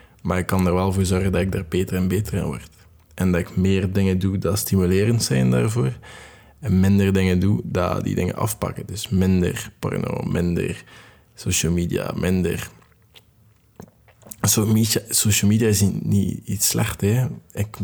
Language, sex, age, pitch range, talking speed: Dutch, male, 20-39, 90-105 Hz, 160 wpm